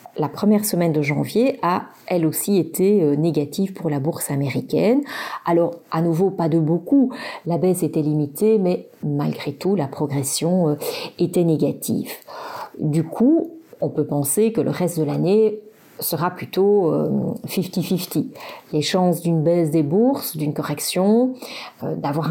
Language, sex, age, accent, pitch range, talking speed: French, female, 40-59, French, 155-205 Hz, 145 wpm